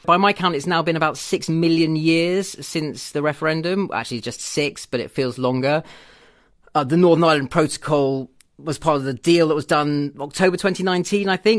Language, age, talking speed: English, 30-49, 180 wpm